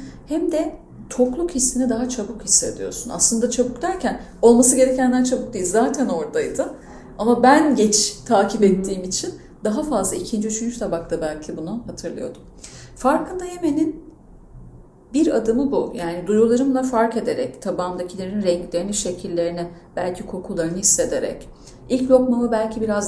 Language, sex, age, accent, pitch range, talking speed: Turkish, female, 30-49, native, 205-260 Hz, 125 wpm